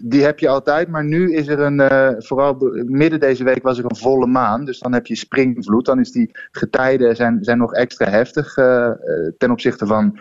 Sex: male